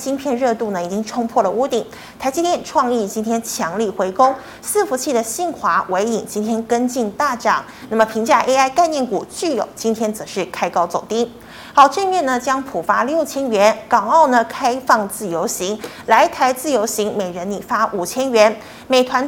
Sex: female